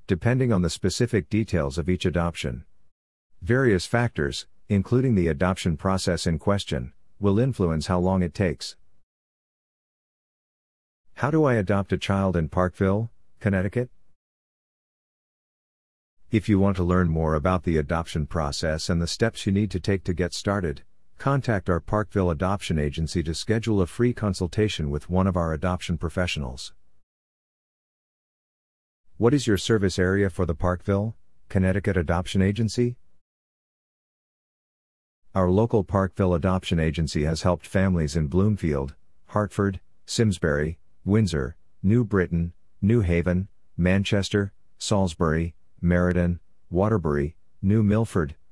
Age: 50-69